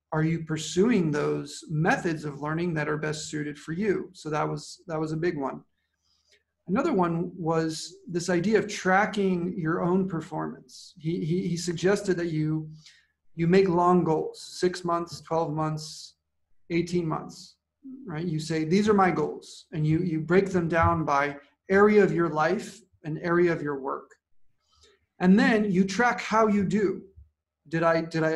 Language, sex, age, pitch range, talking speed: English, male, 40-59, 155-190 Hz, 170 wpm